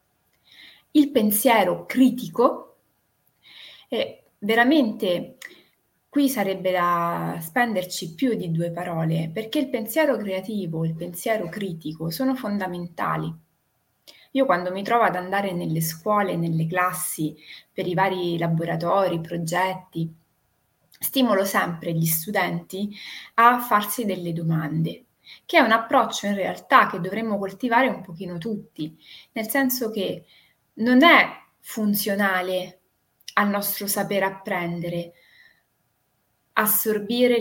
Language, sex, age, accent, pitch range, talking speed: Italian, female, 20-39, native, 175-230 Hz, 110 wpm